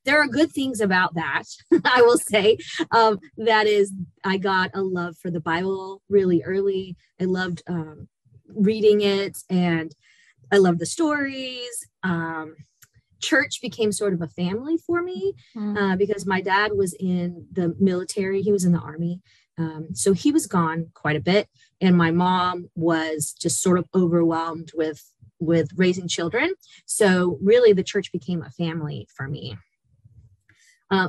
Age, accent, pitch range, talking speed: 20-39, American, 170-205 Hz, 160 wpm